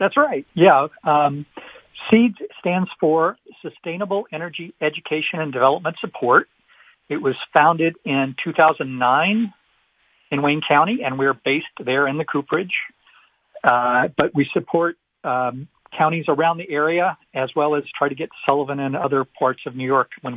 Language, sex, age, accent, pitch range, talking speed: English, male, 50-69, American, 130-165 Hz, 150 wpm